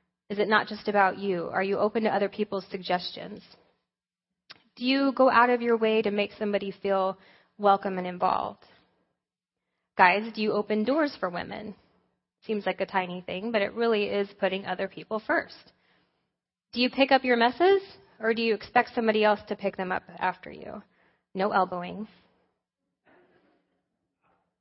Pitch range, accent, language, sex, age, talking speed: 190-240 Hz, American, English, female, 20-39, 165 wpm